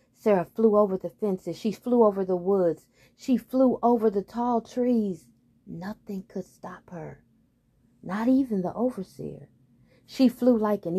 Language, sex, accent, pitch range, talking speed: English, female, American, 155-215 Hz, 155 wpm